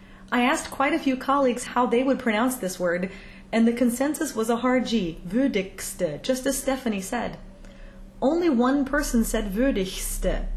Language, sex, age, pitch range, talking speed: English, female, 30-49, 220-265 Hz, 165 wpm